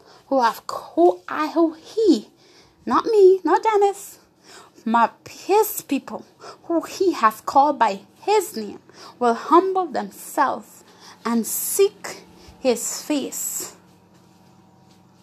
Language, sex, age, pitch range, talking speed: English, female, 20-39, 195-255 Hz, 105 wpm